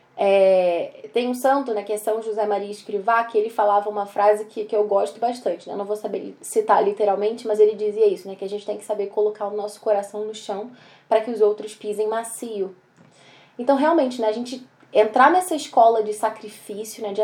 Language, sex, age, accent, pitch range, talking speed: Portuguese, female, 10-29, Brazilian, 210-250 Hz, 220 wpm